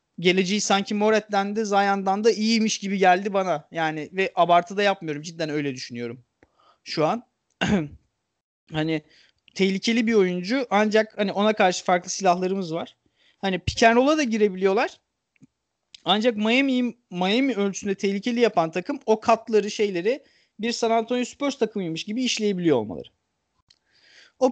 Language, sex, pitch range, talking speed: Turkish, male, 185-235 Hz, 130 wpm